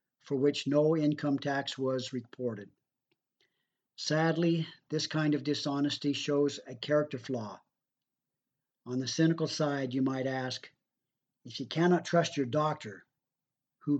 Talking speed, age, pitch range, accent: 130 wpm, 50-69, 130-160 Hz, American